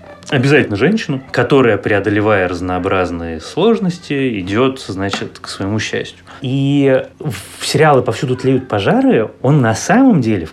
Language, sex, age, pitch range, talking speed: Russian, male, 20-39, 110-150 Hz, 125 wpm